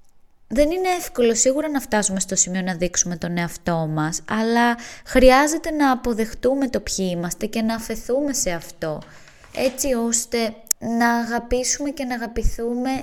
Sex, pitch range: female, 175-245 Hz